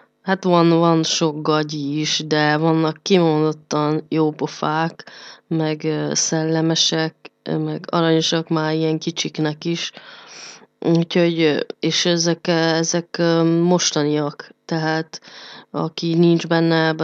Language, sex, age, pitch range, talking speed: Hungarian, female, 20-39, 155-170 Hz, 100 wpm